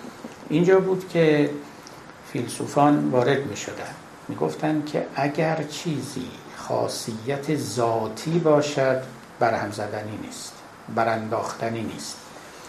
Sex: male